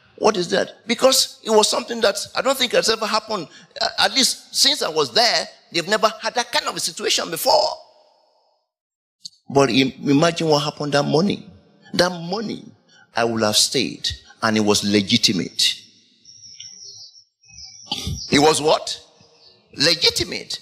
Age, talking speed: 50-69, 145 wpm